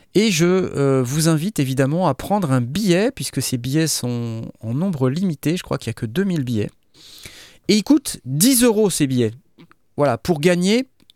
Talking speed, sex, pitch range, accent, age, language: 190 wpm, male, 115-180 Hz, French, 30-49, French